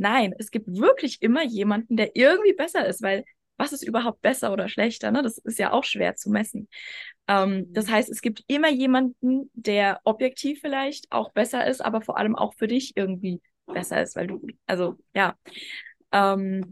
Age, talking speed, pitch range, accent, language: 20-39, 185 wpm, 215-260 Hz, German, German